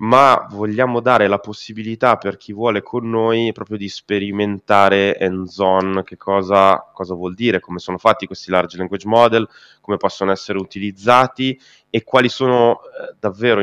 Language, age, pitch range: Italian, 20-39, 85-105 Hz